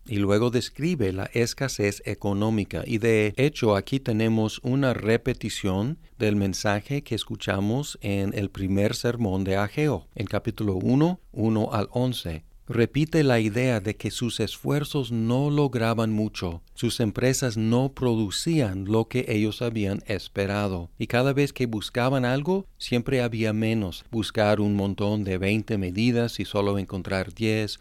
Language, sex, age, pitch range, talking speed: Spanish, male, 50-69, 100-120 Hz, 145 wpm